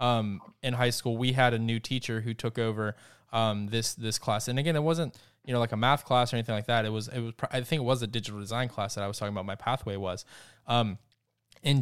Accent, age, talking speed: American, 20-39, 265 wpm